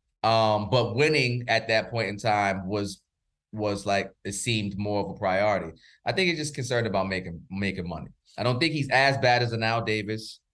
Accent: American